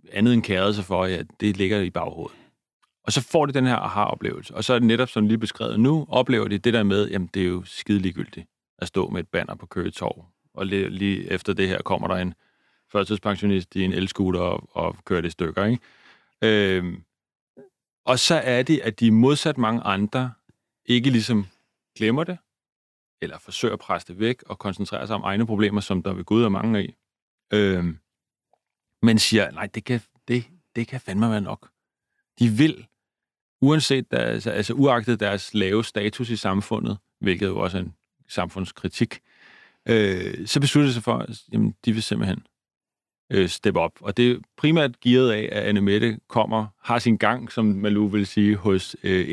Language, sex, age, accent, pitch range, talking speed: Danish, male, 30-49, native, 100-120 Hz, 190 wpm